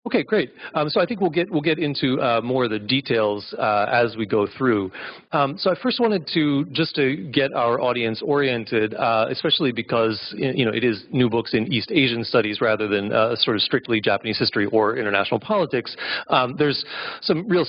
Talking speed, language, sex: 205 wpm, English, male